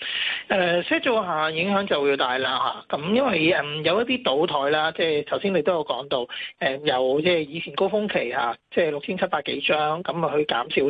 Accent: native